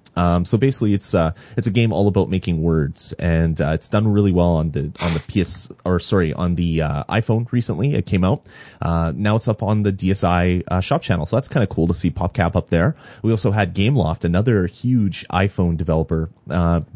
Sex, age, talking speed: male, 30-49, 220 wpm